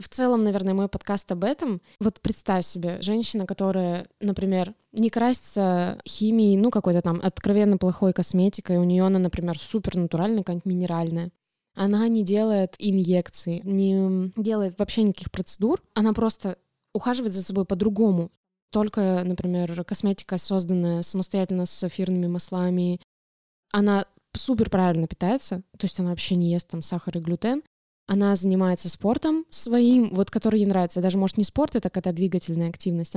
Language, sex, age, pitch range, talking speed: Russian, female, 20-39, 185-220 Hz, 150 wpm